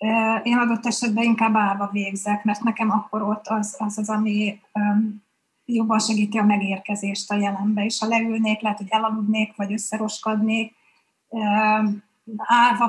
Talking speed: 135 wpm